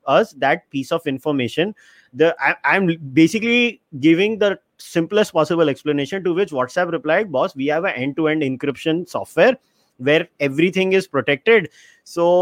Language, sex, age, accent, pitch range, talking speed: English, male, 30-49, Indian, 150-200 Hz, 145 wpm